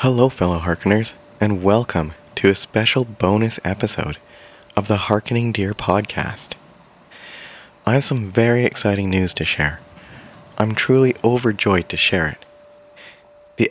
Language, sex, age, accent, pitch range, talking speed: English, male, 30-49, American, 100-120 Hz, 130 wpm